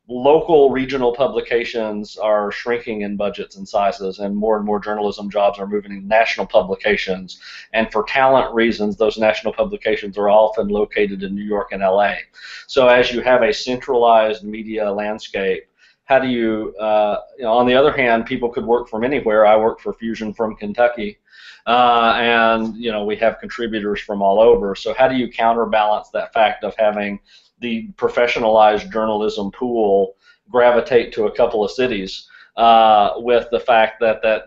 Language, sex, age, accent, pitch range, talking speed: English, male, 40-59, American, 105-120 Hz, 170 wpm